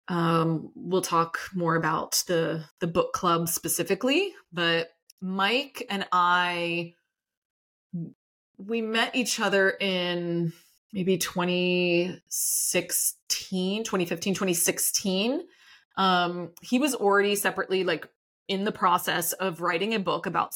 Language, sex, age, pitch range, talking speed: English, female, 20-39, 170-195 Hz, 110 wpm